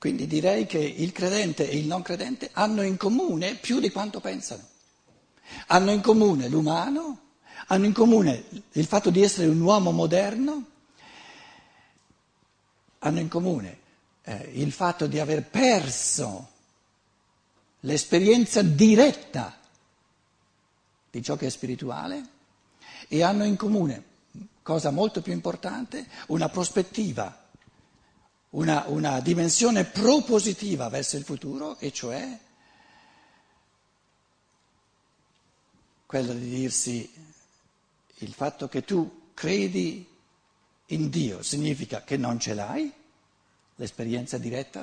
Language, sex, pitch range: Italian, male, 140-210 Hz